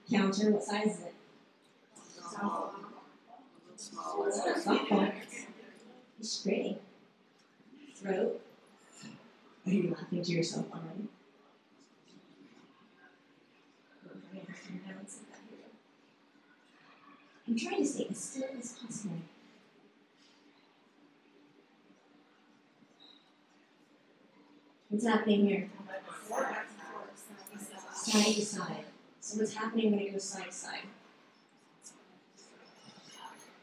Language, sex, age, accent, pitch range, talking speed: English, female, 30-49, American, 200-230 Hz, 55 wpm